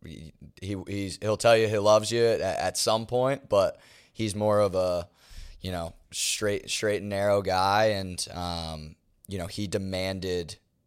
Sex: male